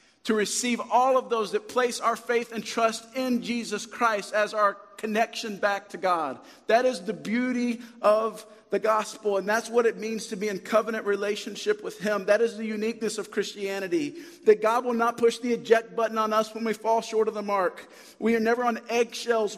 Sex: male